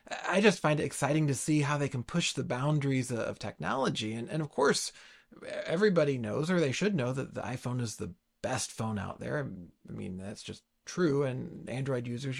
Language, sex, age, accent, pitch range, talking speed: English, male, 30-49, American, 130-170 Hz, 205 wpm